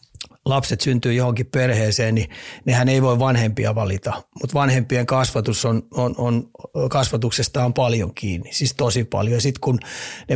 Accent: native